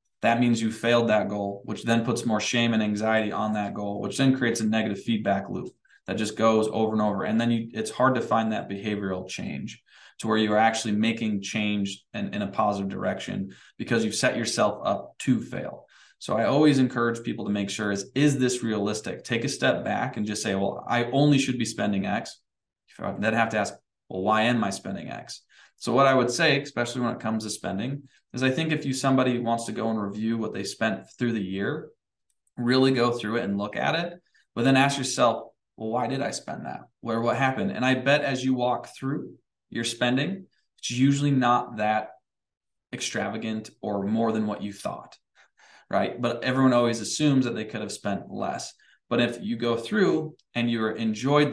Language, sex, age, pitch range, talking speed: English, male, 20-39, 110-130 Hz, 215 wpm